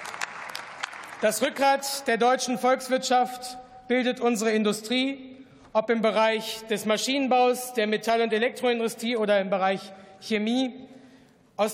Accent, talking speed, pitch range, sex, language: German, 110 wpm, 225-255 Hz, male, German